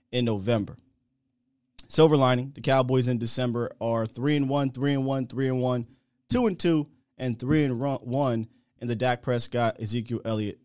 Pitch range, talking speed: 115-135 Hz, 175 wpm